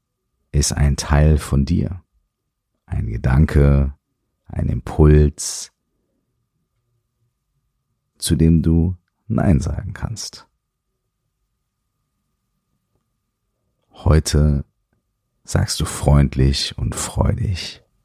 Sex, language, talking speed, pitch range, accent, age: male, German, 70 wpm, 70-110 Hz, German, 40-59